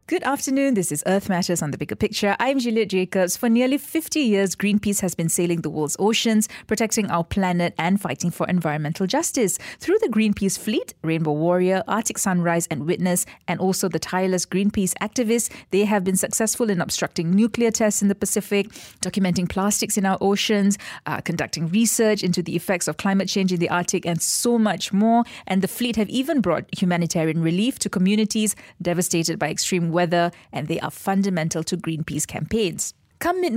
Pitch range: 175-215 Hz